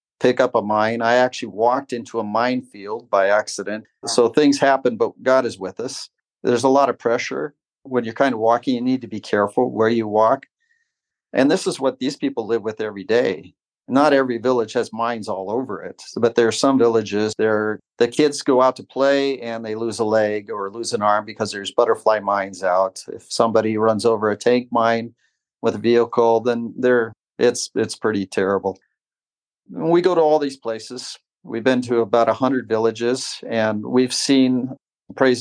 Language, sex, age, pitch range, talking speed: English, male, 40-59, 110-135 Hz, 195 wpm